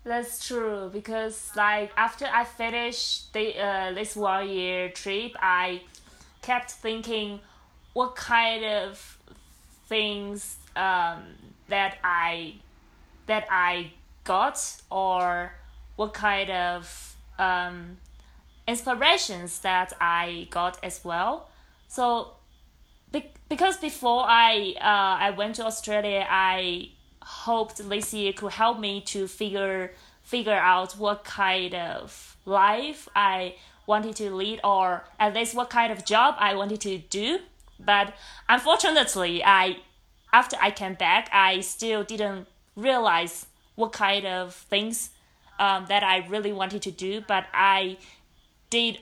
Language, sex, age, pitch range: Chinese, female, 20-39, 185-220 Hz